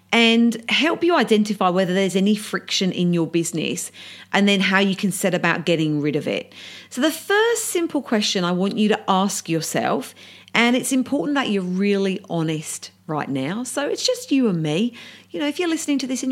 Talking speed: 205 wpm